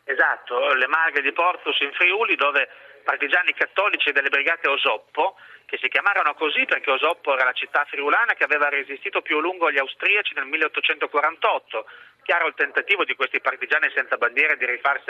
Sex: male